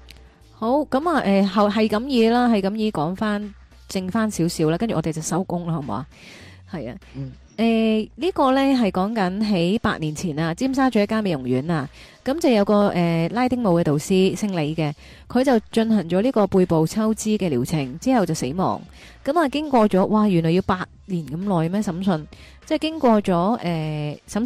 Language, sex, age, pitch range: Chinese, female, 20-39, 170-225 Hz